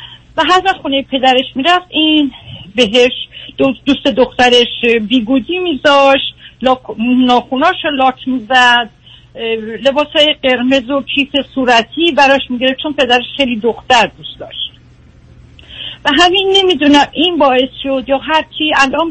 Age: 50-69